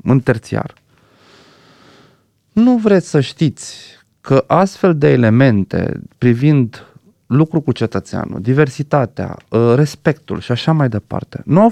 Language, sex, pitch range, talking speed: Romanian, male, 110-155 Hz, 115 wpm